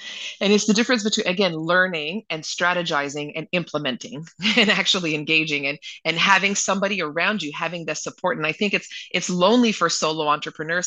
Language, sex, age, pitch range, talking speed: English, female, 30-49, 145-185 Hz, 175 wpm